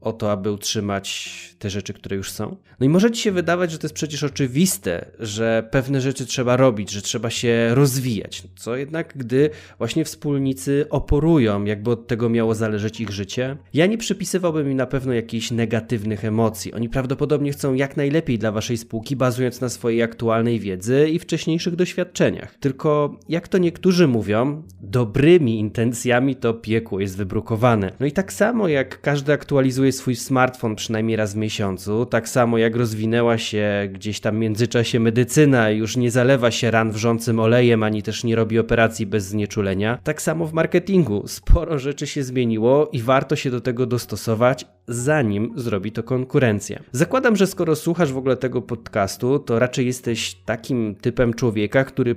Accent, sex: native, male